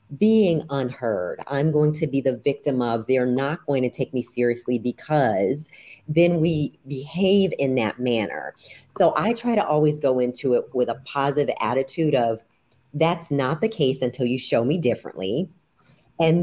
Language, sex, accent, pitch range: English, female, American, 130-170 Hz